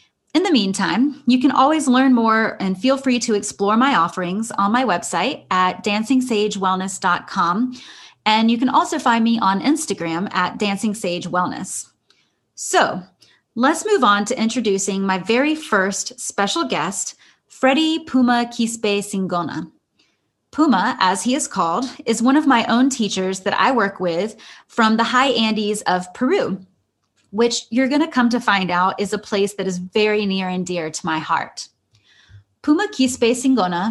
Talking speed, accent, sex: 155 wpm, American, female